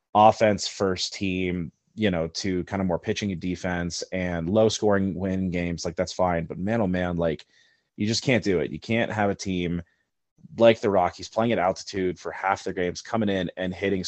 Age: 30-49